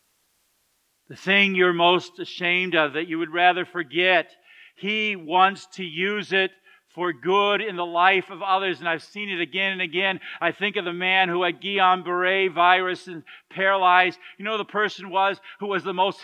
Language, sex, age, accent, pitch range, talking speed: English, male, 50-69, American, 175-205 Hz, 185 wpm